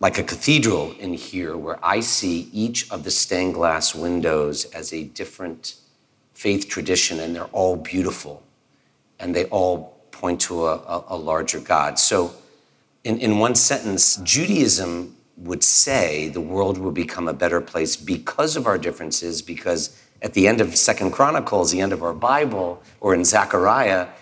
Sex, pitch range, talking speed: male, 85-110 Hz, 165 wpm